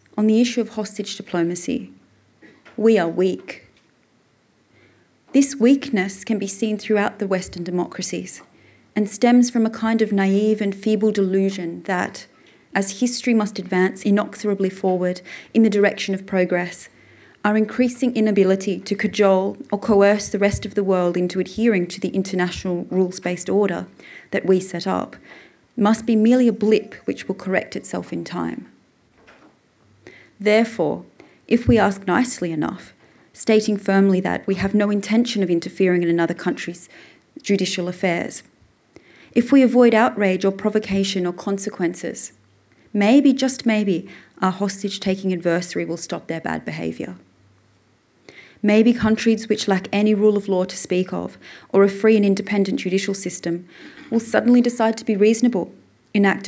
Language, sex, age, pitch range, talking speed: English, female, 30-49, 180-215 Hz, 145 wpm